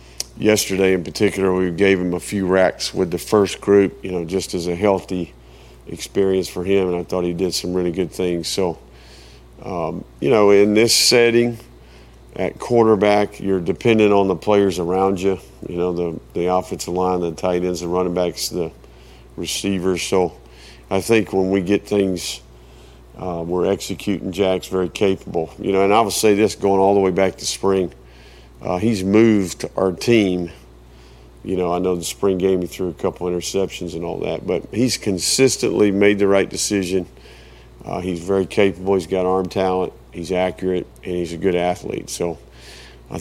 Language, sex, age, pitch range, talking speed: English, male, 50-69, 85-100 Hz, 185 wpm